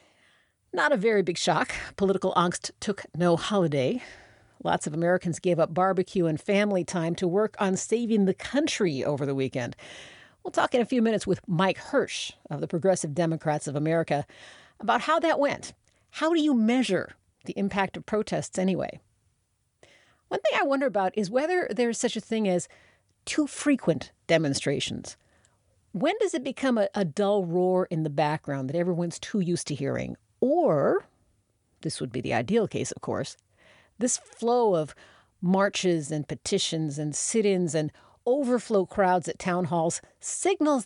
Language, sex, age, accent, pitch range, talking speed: English, female, 50-69, American, 155-230 Hz, 165 wpm